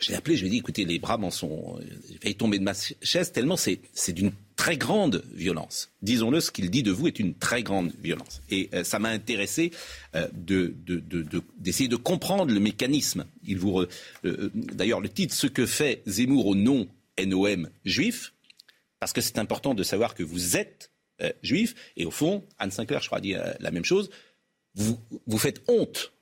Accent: French